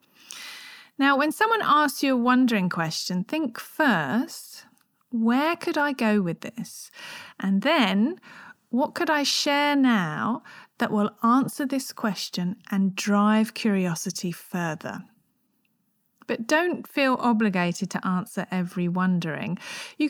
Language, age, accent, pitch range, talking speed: English, 40-59, British, 190-260 Hz, 120 wpm